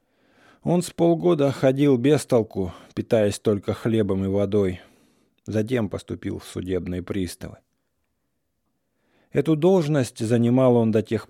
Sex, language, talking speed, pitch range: male, English, 115 wpm, 95-125 Hz